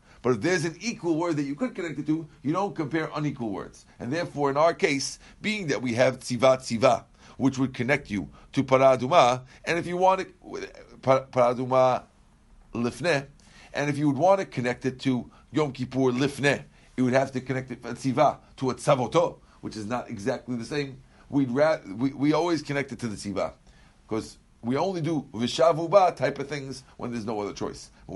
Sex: male